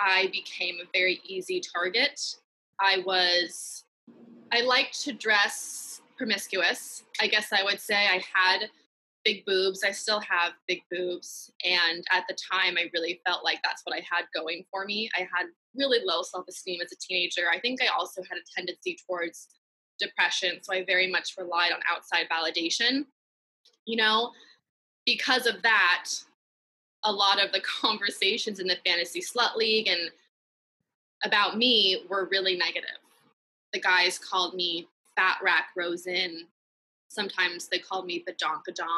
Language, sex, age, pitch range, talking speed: English, female, 20-39, 180-215 Hz, 155 wpm